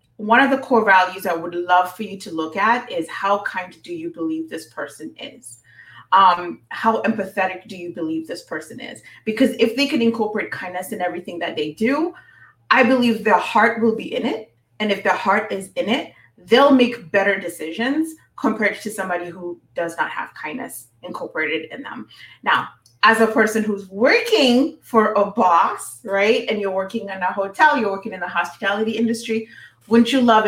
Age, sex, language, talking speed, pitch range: 30-49, female, English, 190 wpm, 190-240 Hz